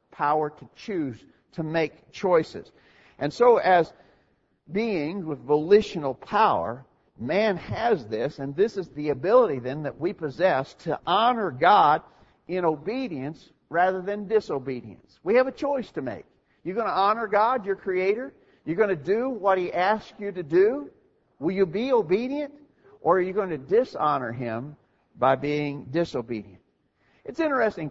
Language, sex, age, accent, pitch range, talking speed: English, male, 50-69, American, 150-210 Hz, 155 wpm